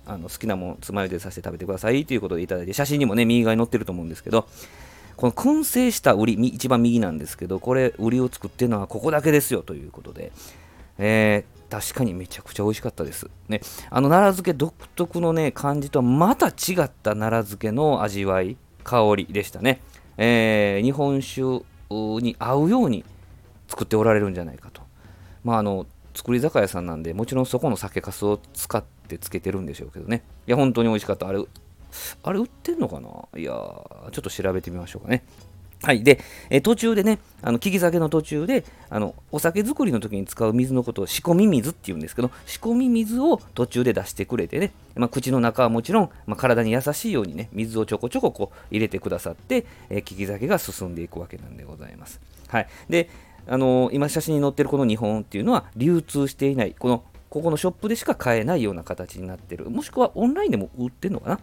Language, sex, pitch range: Japanese, male, 95-135 Hz